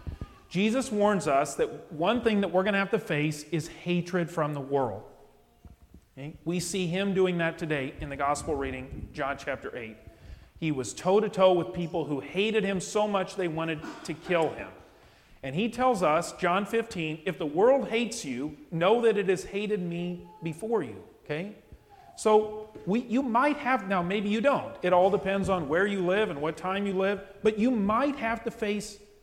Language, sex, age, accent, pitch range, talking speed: English, male, 40-59, American, 165-210 Hz, 195 wpm